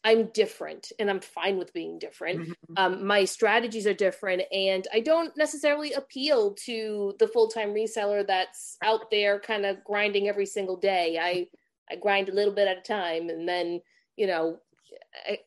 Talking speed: 175 wpm